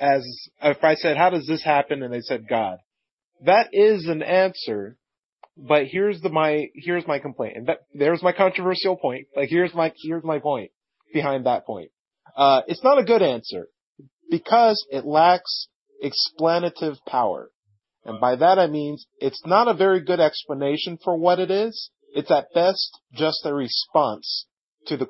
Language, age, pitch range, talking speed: English, 30-49, 140-195 Hz, 170 wpm